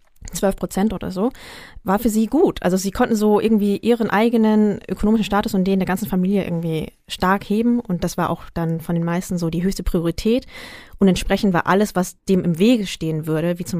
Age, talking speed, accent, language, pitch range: 20-39, 215 wpm, German, German, 170-200 Hz